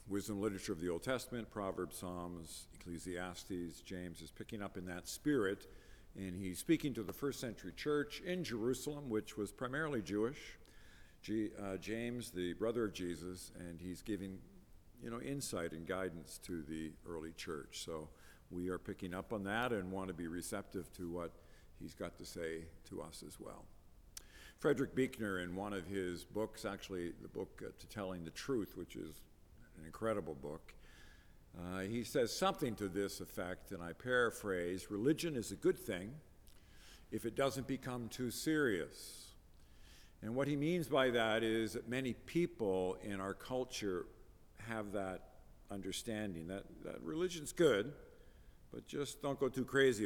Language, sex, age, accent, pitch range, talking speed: English, male, 50-69, American, 90-115 Hz, 165 wpm